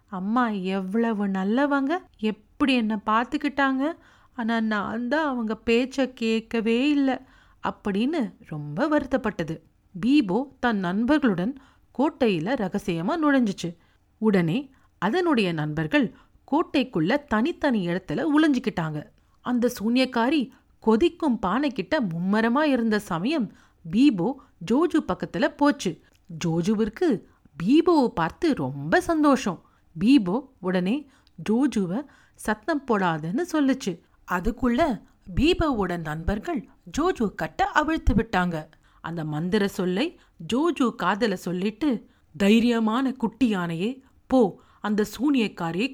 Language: Tamil